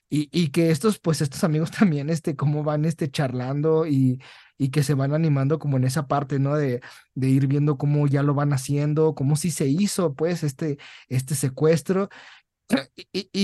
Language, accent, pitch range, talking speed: Spanish, Mexican, 140-175 Hz, 190 wpm